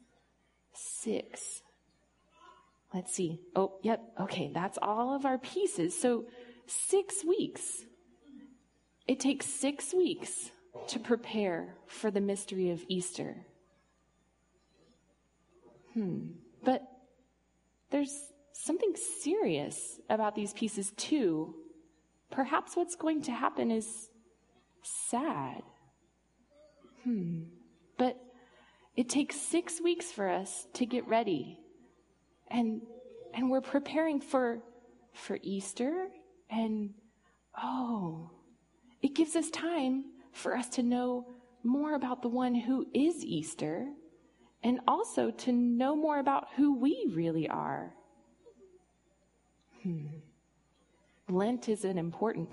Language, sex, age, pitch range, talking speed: English, female, 20-39, 200-290 Hz, 105 wpm